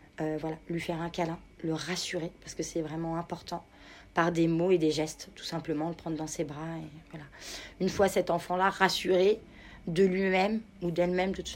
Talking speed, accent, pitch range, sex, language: 205 wpm, French, 160-185 Hz, female, French